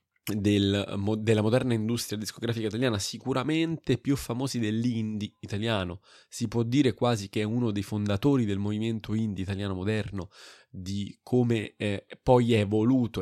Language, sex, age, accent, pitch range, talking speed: Italian, male, 20-39, native, 100-125 Hz, 145 wpm